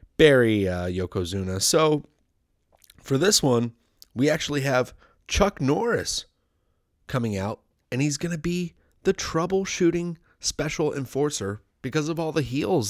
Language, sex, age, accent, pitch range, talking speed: English, male, 30-49, American, 95-145 Hz, 130 wpm